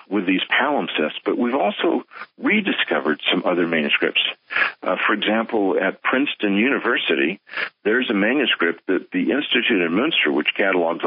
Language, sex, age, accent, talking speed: English, male, 60-79, American, 140 wpm